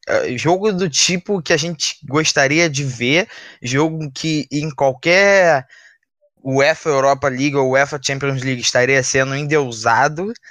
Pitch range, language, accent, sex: 115-140 Hz, Portuguese, Brazilian, male